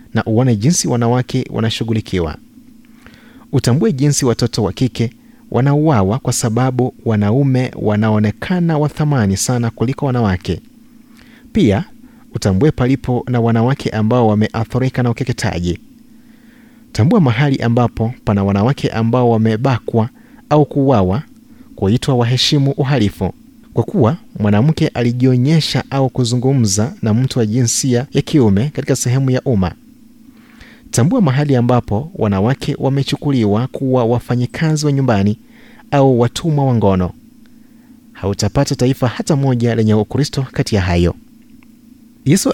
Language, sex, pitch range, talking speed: Swahili, male, 110-150 Hz, 115 wpm